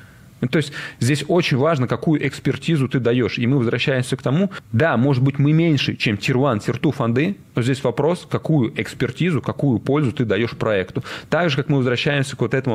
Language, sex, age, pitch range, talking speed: Russian, male, 20-39, 115-145 Hz, 195 wpm